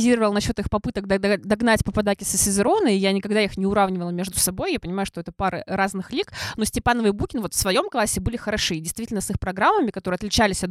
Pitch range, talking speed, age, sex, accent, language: 185-230 Hz, 225 wpm, 20-39, female, native, Russian